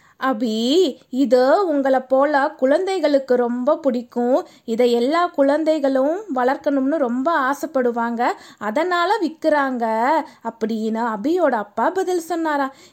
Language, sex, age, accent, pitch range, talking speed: Tamil, female, 20-39, native, 245-335 Hz, 95 wpm